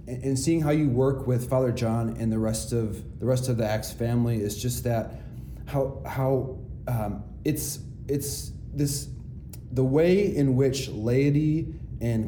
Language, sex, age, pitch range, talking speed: English, male, 30-49, 110-135 Hz, 160 wpm